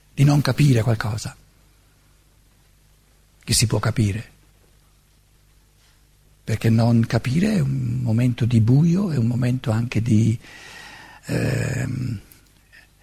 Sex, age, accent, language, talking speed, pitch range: male, 50-69, native, Italian, 100 wpm, 115-145 Hz